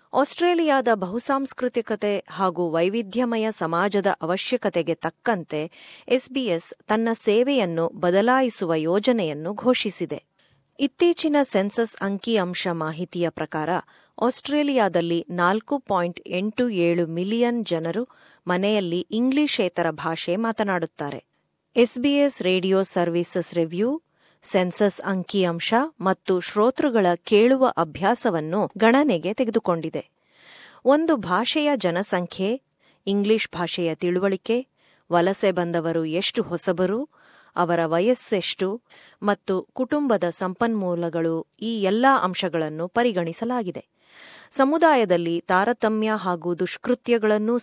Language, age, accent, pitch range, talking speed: Kannada, 30-49, native, 175-240 Hz, 85 wpm